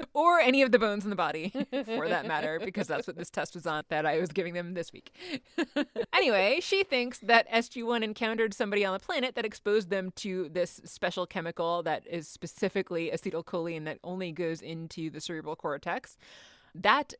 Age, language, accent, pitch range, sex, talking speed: 30-49, English, American, 170-230 Hz, female, 190 wpm